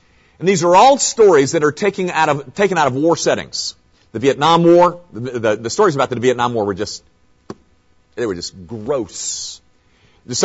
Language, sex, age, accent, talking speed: English, male, 50-69, American, 185 wpm